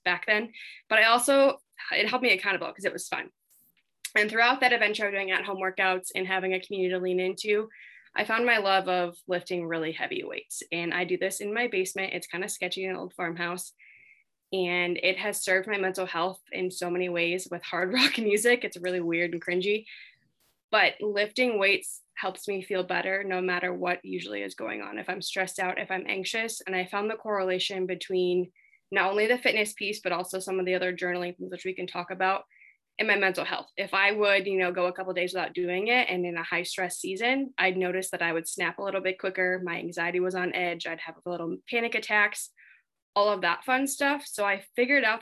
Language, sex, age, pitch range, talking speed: English, female, 20-39, 180-215 Hz, 225 wpm